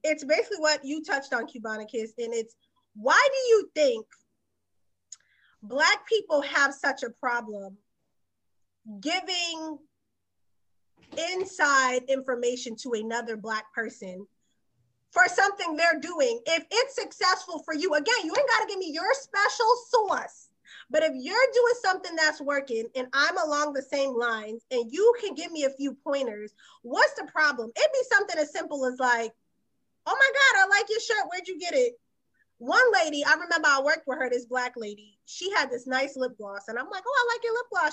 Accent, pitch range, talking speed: American, 250-385 Hz, 180 wpm